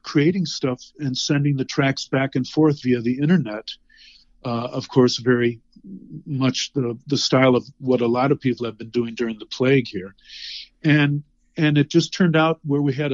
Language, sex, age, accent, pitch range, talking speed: English, male, 50-69, American, 120-145 Hz, 190 wpm